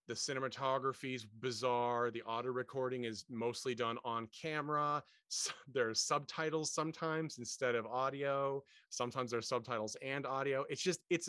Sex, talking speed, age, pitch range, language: male, 150 wpm, 30-49, 110-135 Hz, English